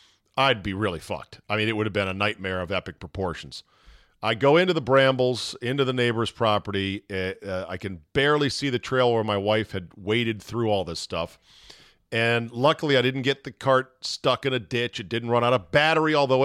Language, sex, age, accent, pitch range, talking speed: English, male, 40-59, American, 100-130 Hz, 215 wpm